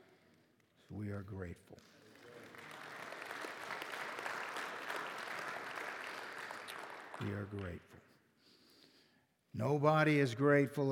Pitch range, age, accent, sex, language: 115-145 Hz, 60-79, American, male, English